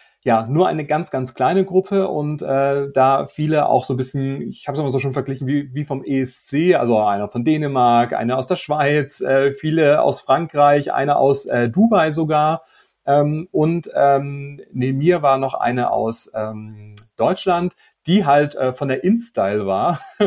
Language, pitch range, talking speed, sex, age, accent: German, 130-155 Hz, 170 wpm, male, 30-49, German